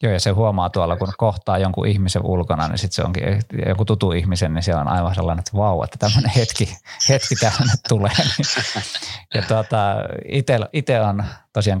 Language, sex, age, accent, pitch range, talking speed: Finnish, male, 20-39, native, 90-110 Hz, 180 wpm